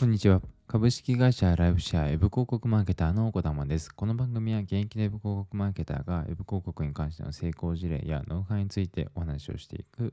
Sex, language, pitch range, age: male, Japanese, 80-115 Hz, 20-39